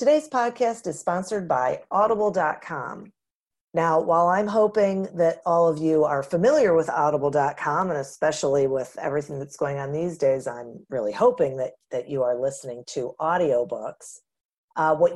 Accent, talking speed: American, 155 wpm